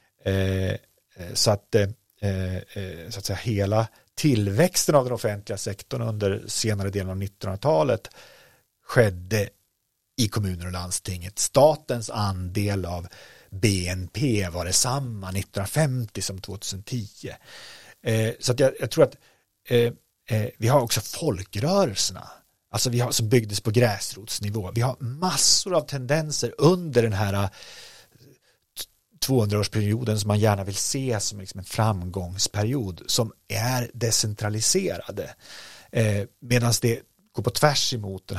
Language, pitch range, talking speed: Swedish, 95-120 Hz, 130 wpm